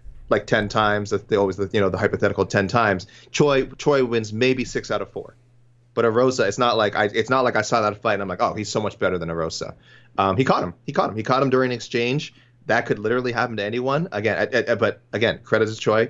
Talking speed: 265 wpm